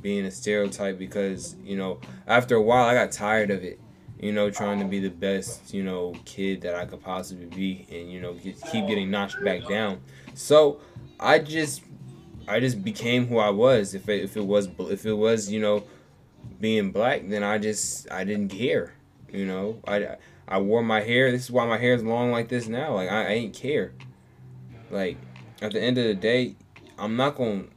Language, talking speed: English, 205 wpm